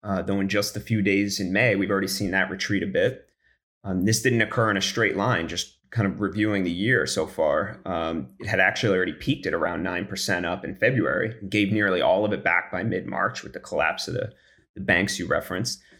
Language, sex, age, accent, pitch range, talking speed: English, male, 30-49, American, 100-115 Hz, 230 wpm